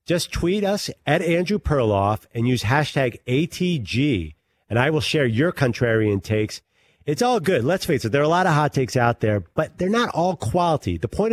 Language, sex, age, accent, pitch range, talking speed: English, male, 40-59, American, 105-150 Hz, 205 wpm